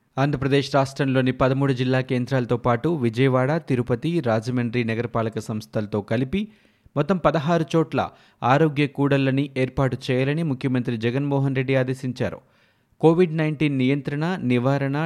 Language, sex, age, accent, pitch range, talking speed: Telugu, male, 30-49, native, 125-155 Hz, 110 wpm